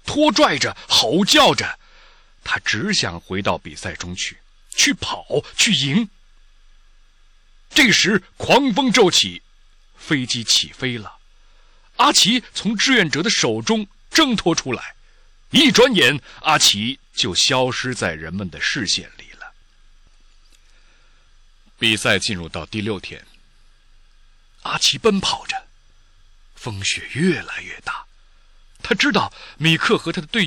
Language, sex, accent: Chinese, male, native